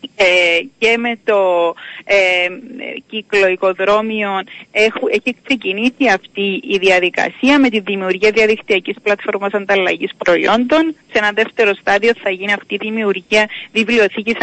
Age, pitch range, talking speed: 30-49, 195-245 Hz, 120 wpm